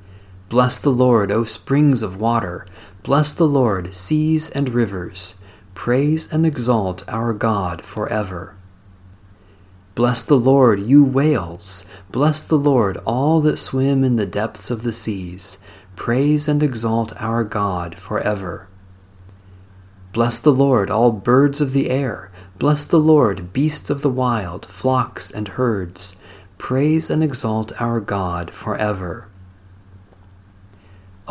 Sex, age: male, 40-59